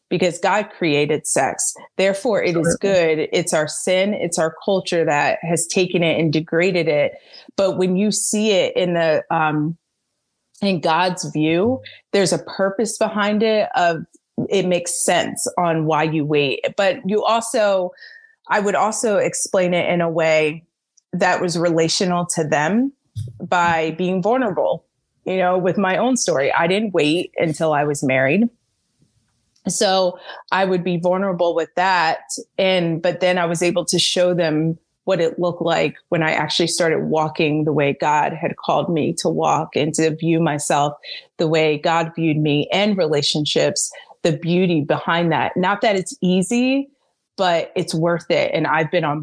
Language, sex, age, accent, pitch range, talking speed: English, female, 30-49, American, 160-190 Hz, 165 wpm